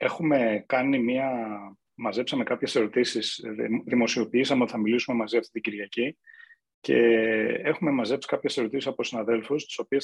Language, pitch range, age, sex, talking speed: Greek, 115-155 Hz, 30-49, male, 135 wpm